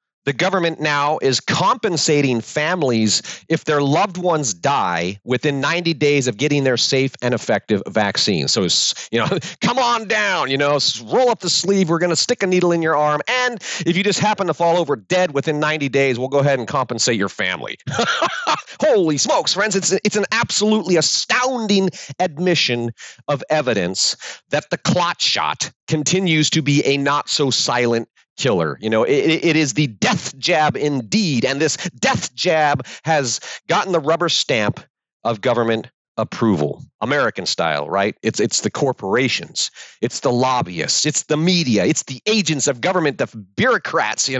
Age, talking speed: 40-59, 170 wpm